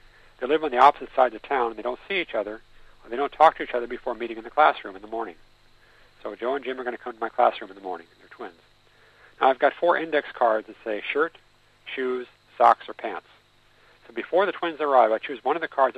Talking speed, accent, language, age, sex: 260 wpm, American, Italian, 60-79, male